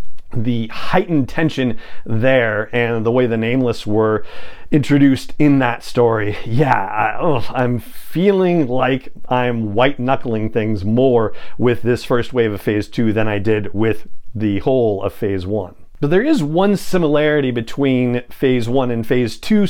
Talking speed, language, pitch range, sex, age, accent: 150 wpm, English, 120-165 Hz, male, 40-59, American